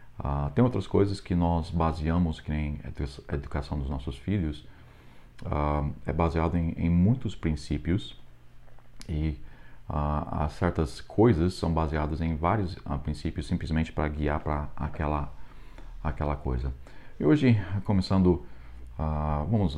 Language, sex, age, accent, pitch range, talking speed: Portuguese, male, 40-59, Brazilian, 70-85 Hz, 130 wpm